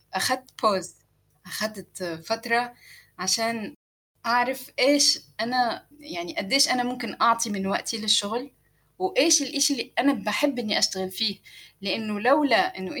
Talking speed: 125 wpm